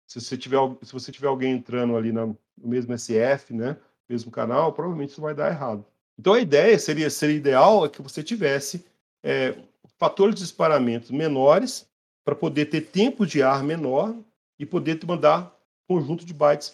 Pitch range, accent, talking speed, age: 130-175 Hz, Brazilian, 175 wpm, 40-59